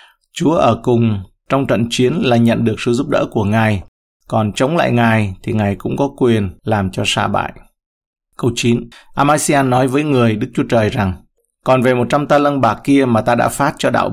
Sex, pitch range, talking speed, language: male, 105-135 Hz, 210 wpm, Vietnamese